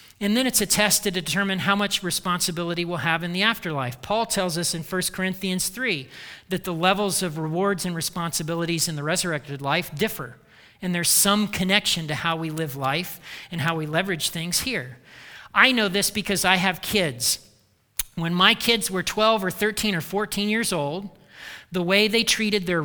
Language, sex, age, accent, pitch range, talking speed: English, male, 40-59, American, 160-200 Hz, 190 wpm